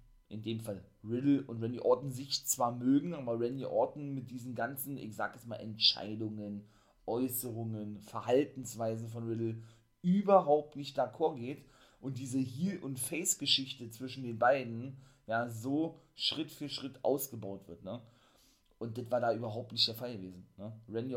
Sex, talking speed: male, 155 wpm